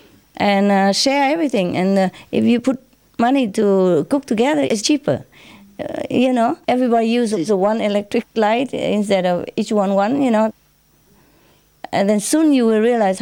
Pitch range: 165-230 Hz